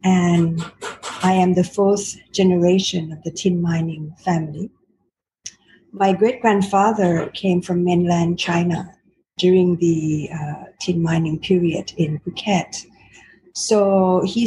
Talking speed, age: 110 wpm, 50-69